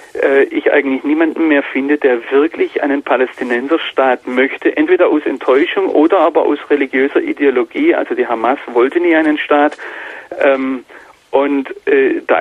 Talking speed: 130 wpm